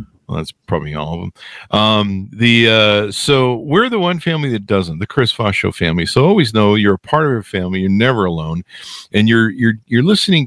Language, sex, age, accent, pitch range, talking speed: English, male, 50-69, American, 95-125 Hz, 220 wpm